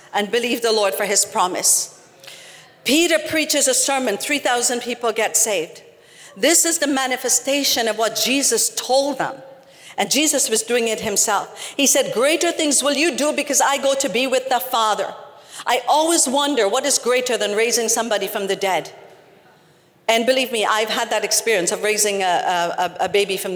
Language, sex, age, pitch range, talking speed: English, female, 50-69, 235-295 Hz, 180 wpm